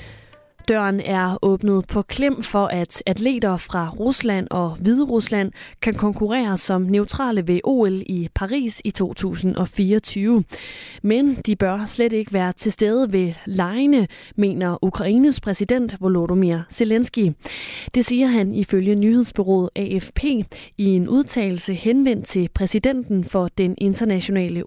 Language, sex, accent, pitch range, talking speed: Danish, female, native, 185-225 Hz, 125 wpm